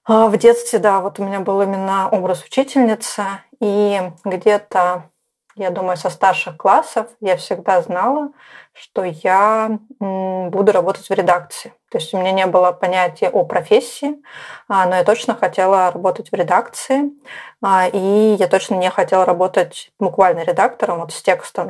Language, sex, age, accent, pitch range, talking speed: Russian, female, 20-39, native, 185-220 Hz, 145 wpm